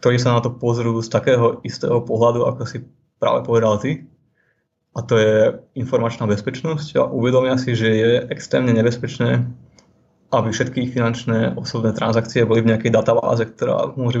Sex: male